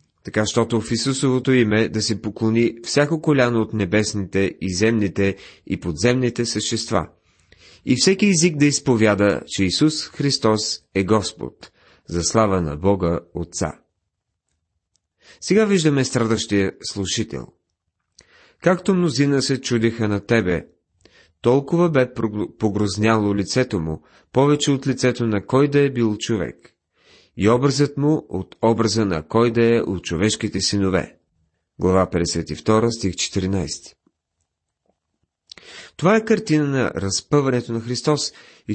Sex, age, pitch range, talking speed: male, 30-49, 95-130 Hz, 125 wpm